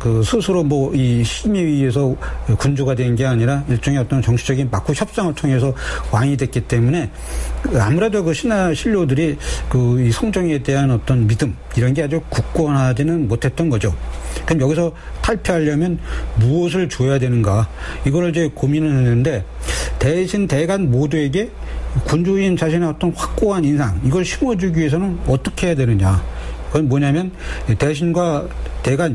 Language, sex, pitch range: Korean, male, 120-165 Hz